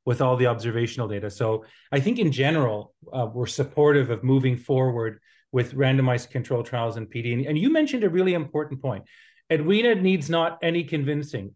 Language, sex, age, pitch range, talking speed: English, male, 40-59, 125-150 Hz, 185 wpm